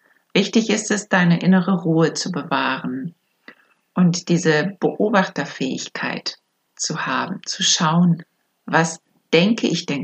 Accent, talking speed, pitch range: German, 115 wpm, 160-190 Hz